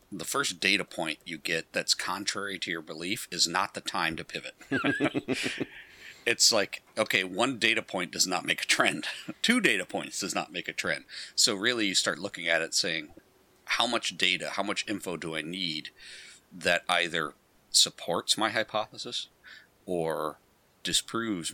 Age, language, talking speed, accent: 40-59, English, 165 wpm, American